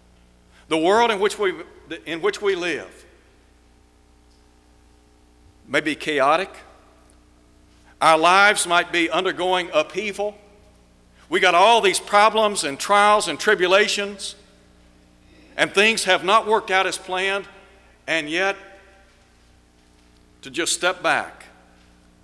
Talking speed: 110 wpm